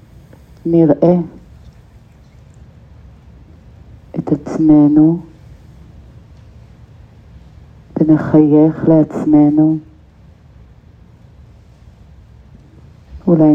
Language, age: Hebrew, 50-69